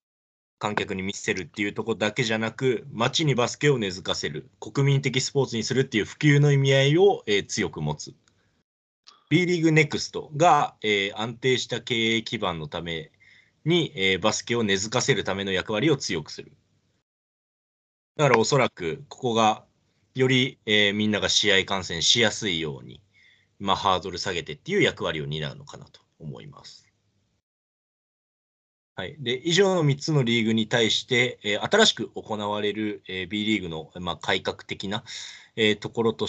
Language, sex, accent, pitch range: Japanese, male, native, 100-135 Hz